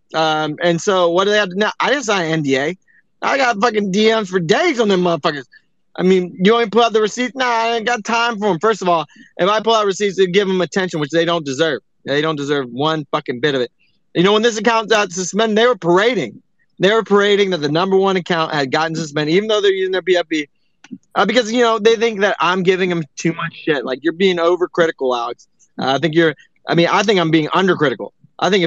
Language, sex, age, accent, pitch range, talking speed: English, male, 20-39, American, 160-215 Hz, 255 wpm